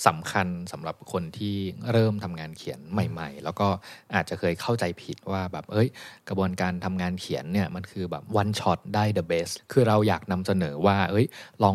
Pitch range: 95-120 Hz